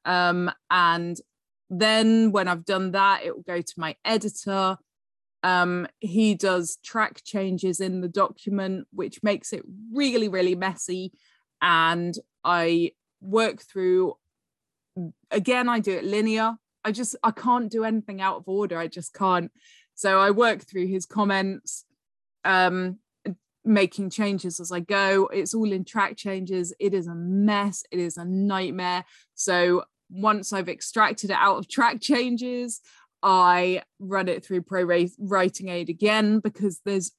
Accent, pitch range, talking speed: British, 180-210 Hz, 145 wpm